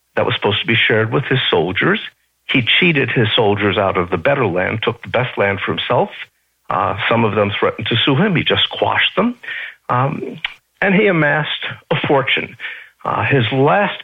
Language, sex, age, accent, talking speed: English, male, 60-79, American, 190 wpm